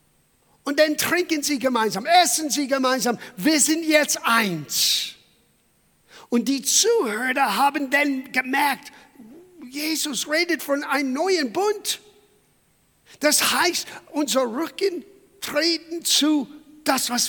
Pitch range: 220-295 Hz